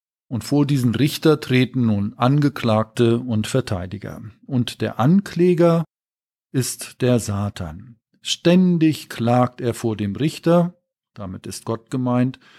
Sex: male